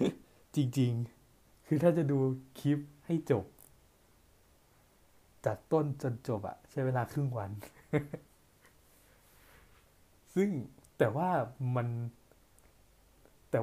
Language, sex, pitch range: Thai, male, 105-135 Hz